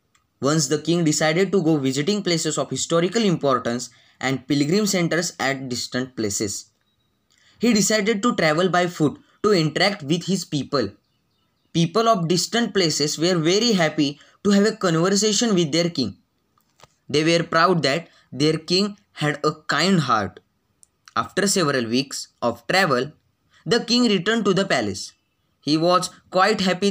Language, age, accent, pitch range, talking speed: Marathi, 10-29, native, 145-195 Hz, 150 wpm